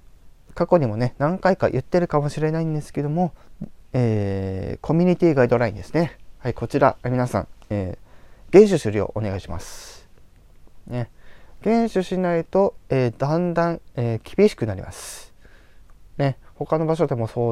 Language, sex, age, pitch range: Japanese, male, 20-39, 110-170 Hz